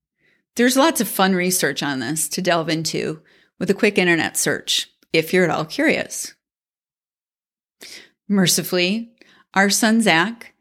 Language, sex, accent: English, female, American